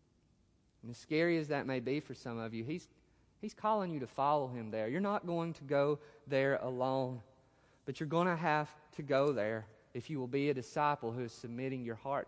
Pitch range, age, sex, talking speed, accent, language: 145-225 Hz, 30-49, male, 220 wpm, American, English